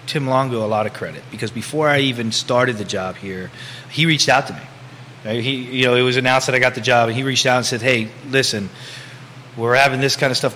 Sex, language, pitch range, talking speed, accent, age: male, English, 120-135 Hz, 250 wpm, American, 30-49